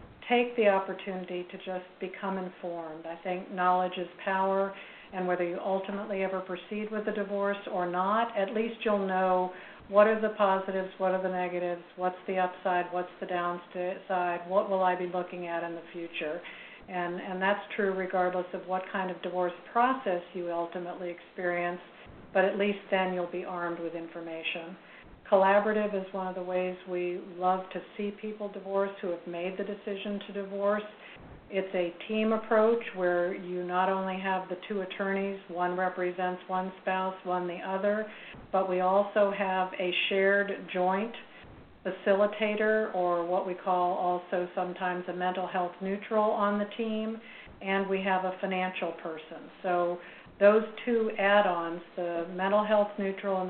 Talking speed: 165 wpm